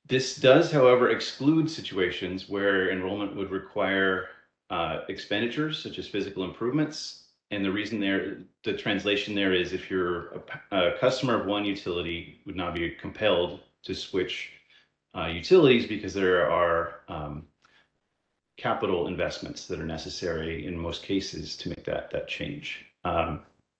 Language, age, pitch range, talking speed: English, 30-49, 95-115 Hz, 140 wpm